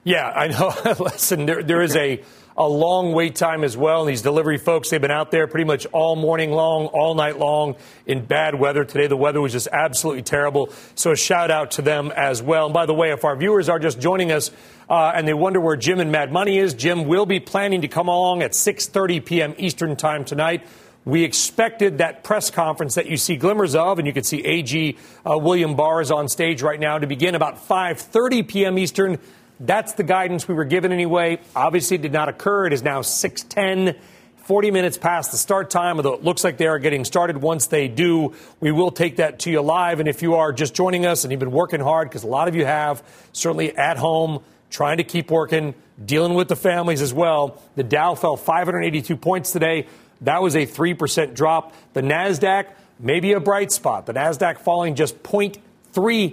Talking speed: 220 wpm